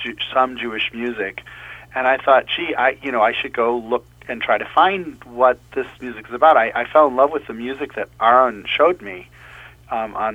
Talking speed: 215 wpm